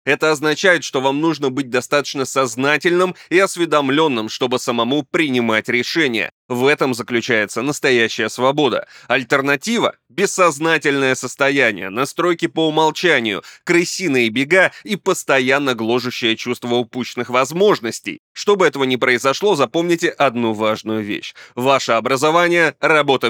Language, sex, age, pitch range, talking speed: Russian, male, 20-39, 120-160 Hz, 115 wpm